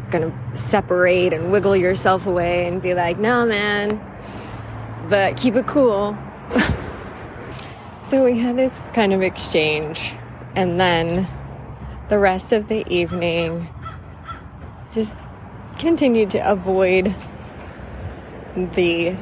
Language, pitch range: English, 155-205 Hz